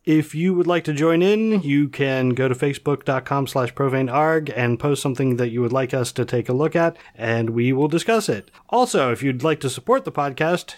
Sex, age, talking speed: male, 40-59, 225 wpm